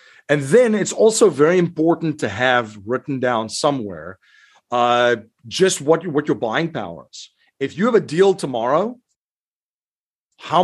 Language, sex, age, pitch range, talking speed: English, male, 50-69, 125-165 Hz, 150 wpm